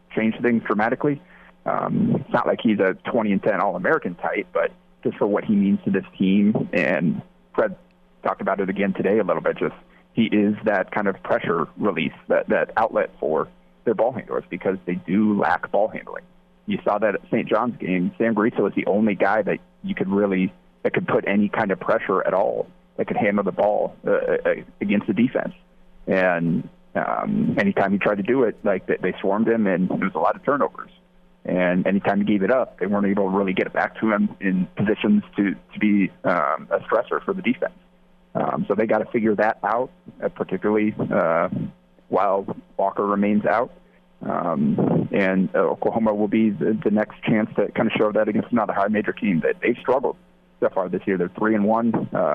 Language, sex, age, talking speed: English, male, 30-49, 205 wpm